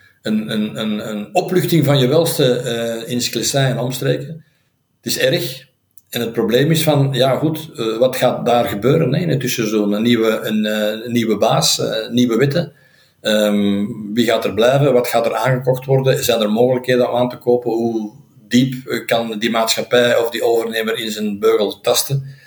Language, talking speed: Dutch, 180 wpm